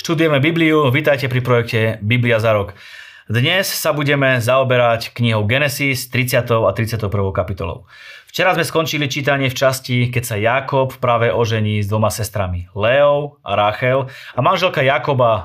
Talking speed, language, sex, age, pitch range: 150 wpm, Slovak, male, 30-49, 105-135 Hz